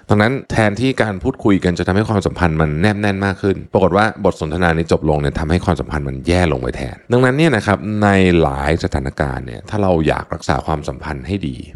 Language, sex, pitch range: Thai, male, 75-100 Hz